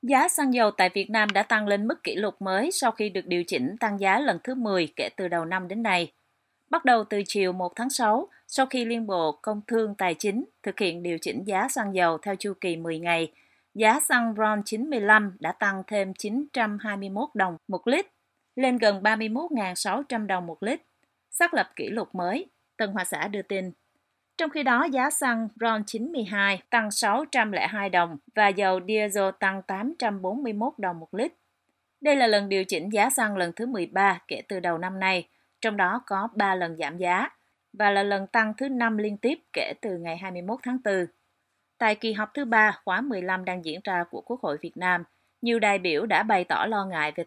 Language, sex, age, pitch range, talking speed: Vietnamese, female, 30-49, 185-235 Hz, 205 wpm